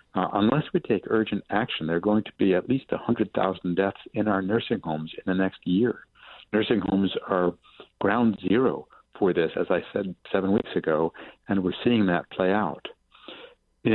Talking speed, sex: 185 wpm, male